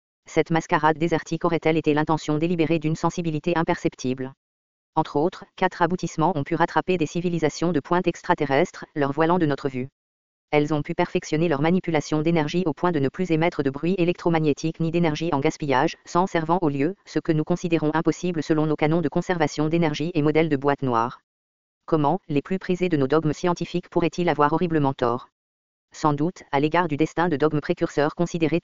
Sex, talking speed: female, 185 wpm